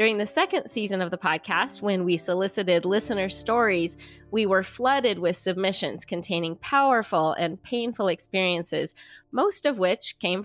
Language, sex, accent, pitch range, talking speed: English, female, American, 175-225 Hz, 150 wpm